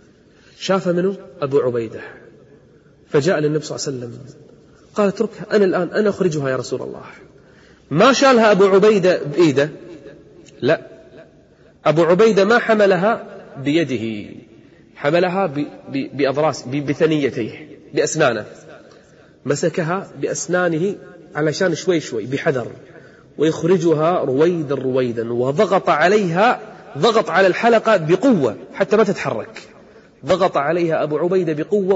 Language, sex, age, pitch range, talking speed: Arabic, male, 30-49, 140-190 Hz, 105 wpm